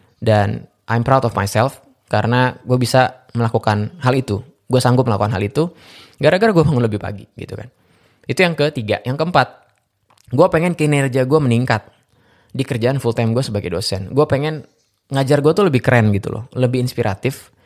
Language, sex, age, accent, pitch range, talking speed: Indonesian, male, 20-39, native, 110-145 Hz, 175 wpm